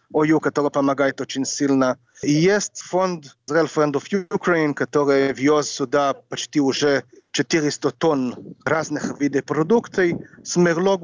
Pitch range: 140-170 Hz